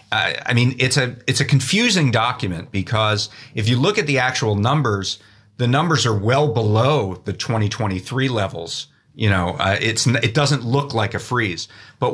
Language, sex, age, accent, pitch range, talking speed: English, male, 40-59, American, 105-135 Hz, 180 wpm